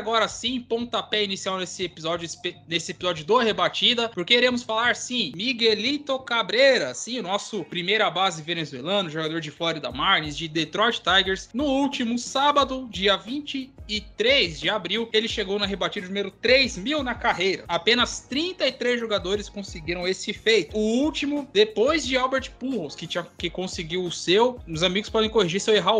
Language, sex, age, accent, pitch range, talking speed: Portuguese, male, 20-39, Brazilian, 170-230 Hz, 165 wpm